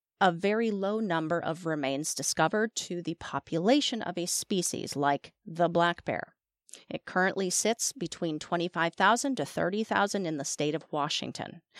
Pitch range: 170-250 Hz